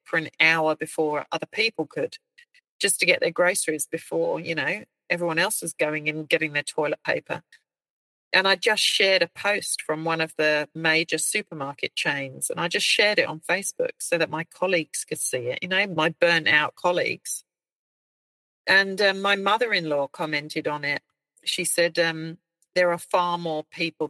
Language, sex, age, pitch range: English, female, 40-59, 155-185 Hz